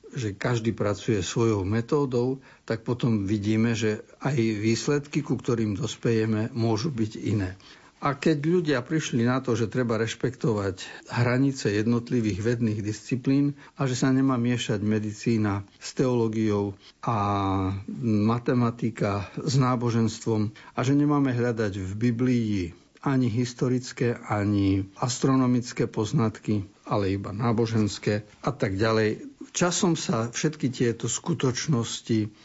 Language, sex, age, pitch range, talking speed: Slovak, male, 50-69, 105-130 Hz, 120 wpm